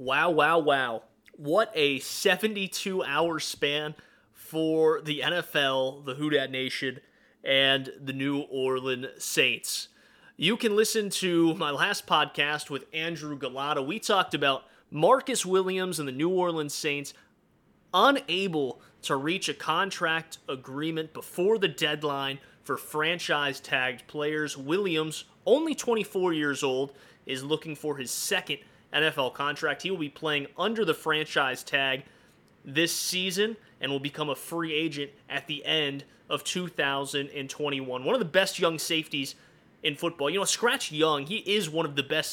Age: 30-49